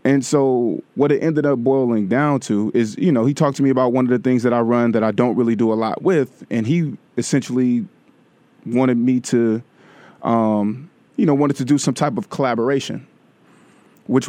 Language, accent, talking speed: English, American, 205 wpm